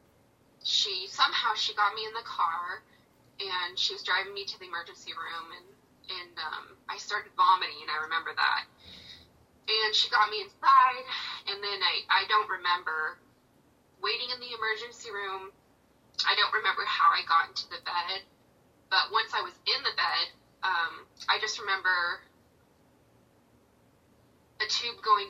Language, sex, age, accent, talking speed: English, female, 20-39, American, 155 wpm